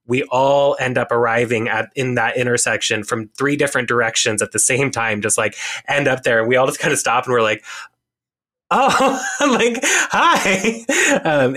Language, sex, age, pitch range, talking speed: English, male, 20-39, 115-150 Hz, 180 wpm